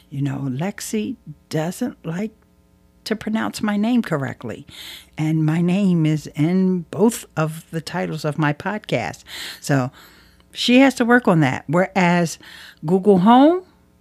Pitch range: 140-210 Hz